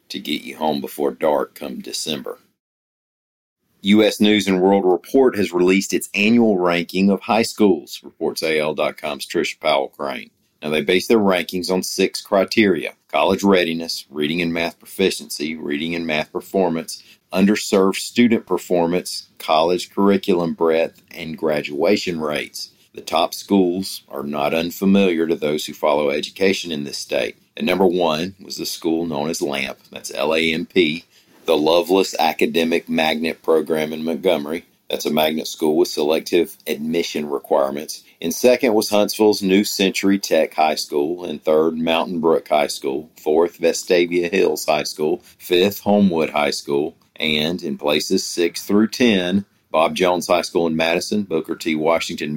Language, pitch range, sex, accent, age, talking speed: English, 80-100 Hz, male, American, 40-59, 150 wpm